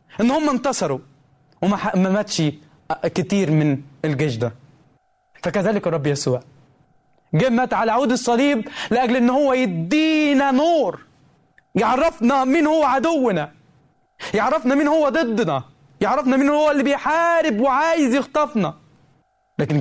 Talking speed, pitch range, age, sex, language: 120 wpm, 150-235 Hz, 20-39, male, Arabic